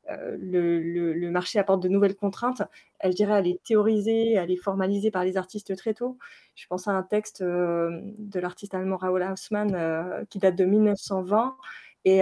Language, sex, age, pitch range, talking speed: French, female, 20-39, 185-225 Hz, 195 wpm